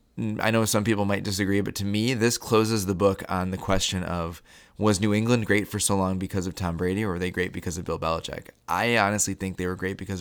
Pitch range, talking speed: 90-105 Hz, 255 wpm